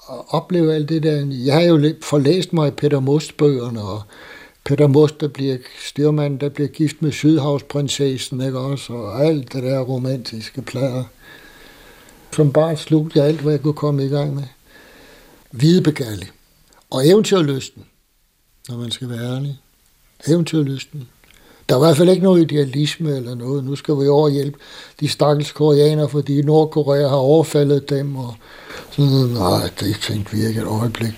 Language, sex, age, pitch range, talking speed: Danish, male, 60-79, 125-155 Hz, 155 wpm